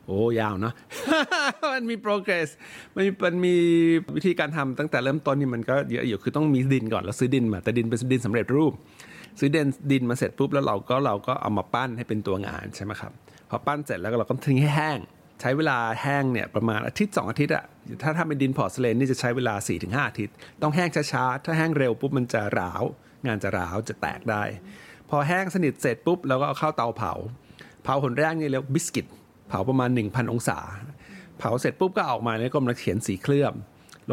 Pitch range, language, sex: 110-145 Hz, Thai, male